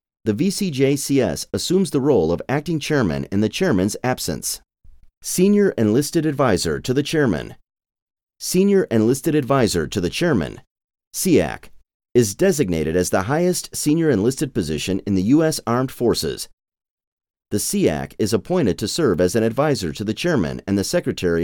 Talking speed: 150 wpm